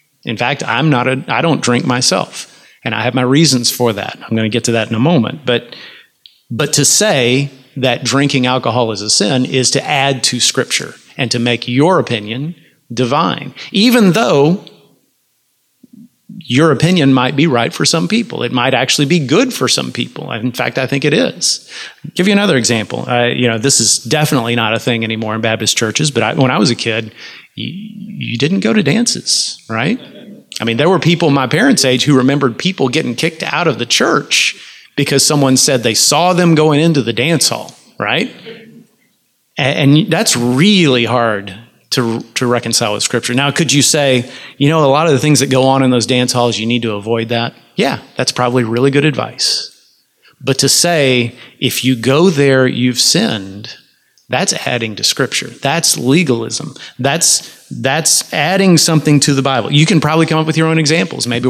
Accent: American